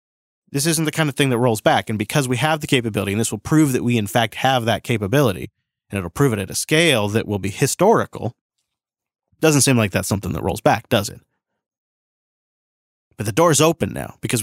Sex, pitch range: male, 115-150 Hz